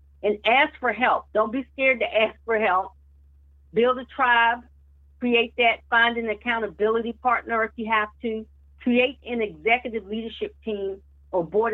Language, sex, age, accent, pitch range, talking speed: English, female, 50-69, American, 155-220 Hz, 160 wpm